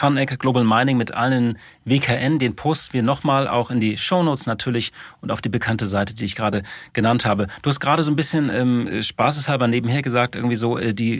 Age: 40-59